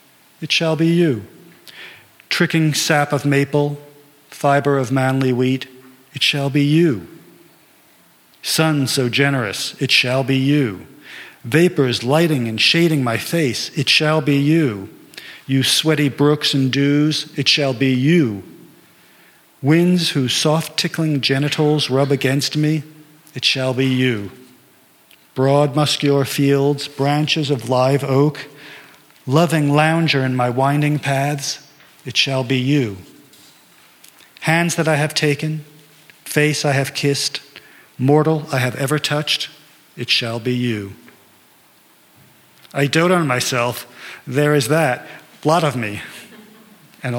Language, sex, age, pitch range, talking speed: English, male, 50-69, 130-155 Hz, 125 wpm